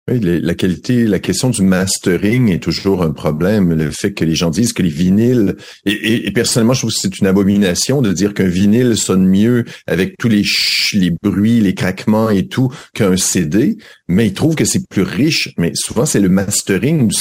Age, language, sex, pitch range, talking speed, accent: 50-69, French, male, 90-115 Hz, 215 wpm, French